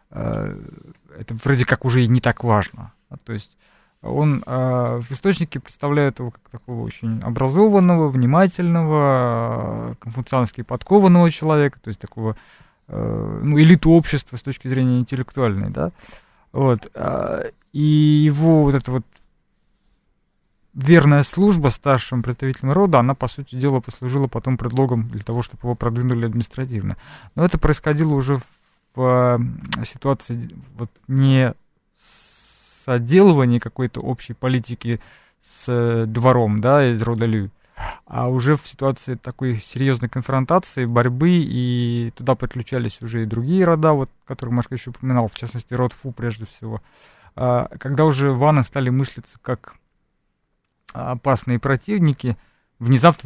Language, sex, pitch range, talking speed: Russian, male, 120-140 Hz, 125 wpm